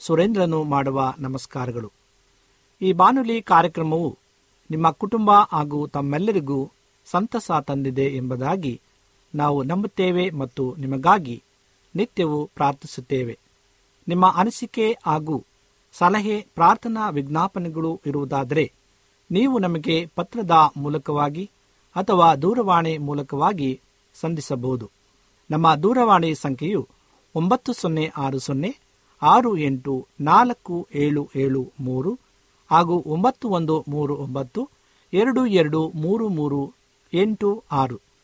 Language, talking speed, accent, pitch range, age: Kannada, 85 wpm, native, 135-180 Hz, 50-69